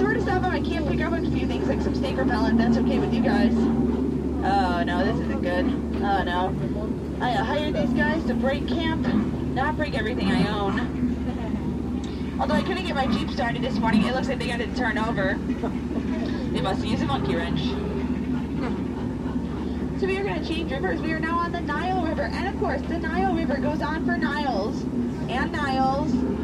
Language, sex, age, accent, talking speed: English, female, 20-39, American, 190 wpm